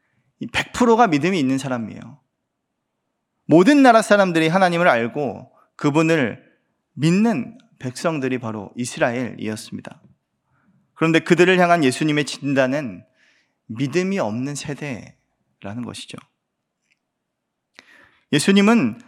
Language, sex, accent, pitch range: Korean, male, native, 130-190 Hz